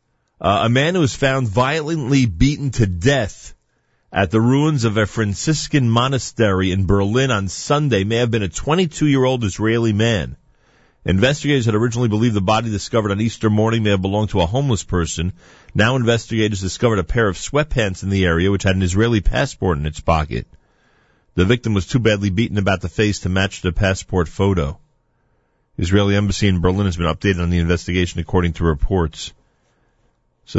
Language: English